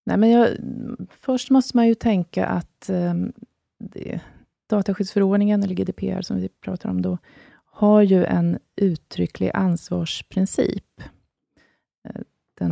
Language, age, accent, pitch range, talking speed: Swedish, 30-49, native, 150-200 Hz, 120 wpm